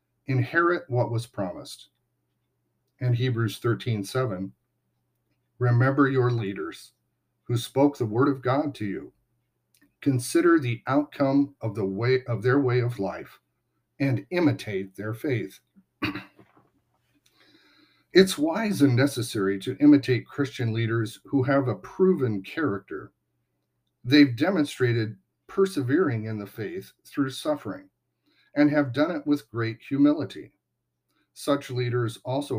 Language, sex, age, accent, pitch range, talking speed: English, male, 50-69, American, 110-140 Hz, 120 wpm